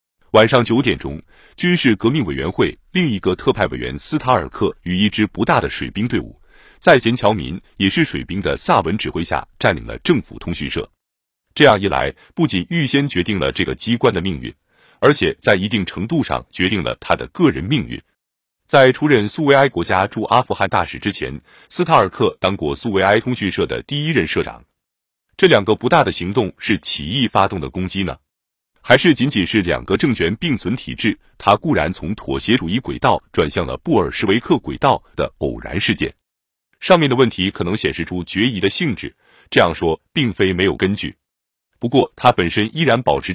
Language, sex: Chinese, male